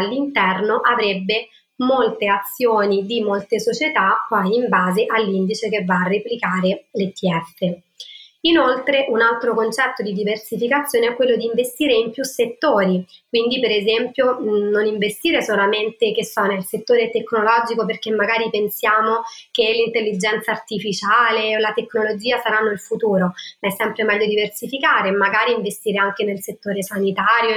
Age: 20-39